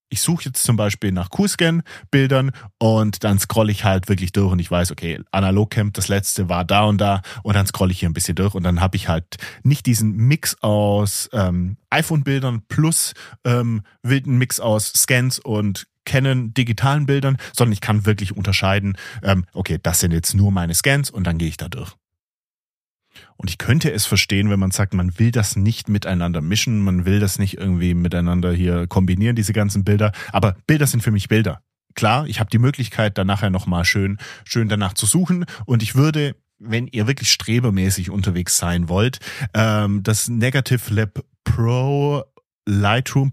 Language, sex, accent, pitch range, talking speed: German, male, German, 95-120 Hz, 180 wpm